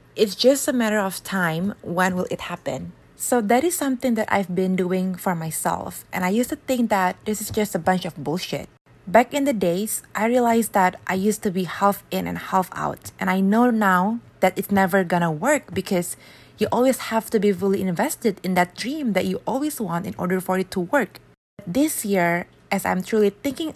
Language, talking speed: Indonesian, 215 wpm